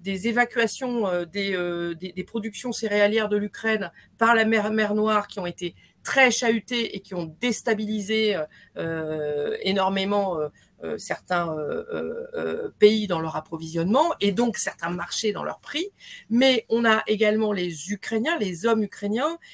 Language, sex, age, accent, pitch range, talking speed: French, female, 40-59, French, 200-240 Hz, 155 wpm